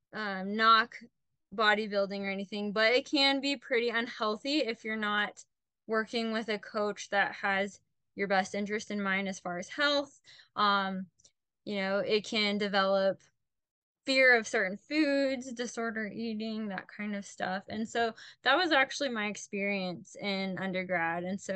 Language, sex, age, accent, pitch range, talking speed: English, female, 10-29, American, 195-230 Hz, 155 wpm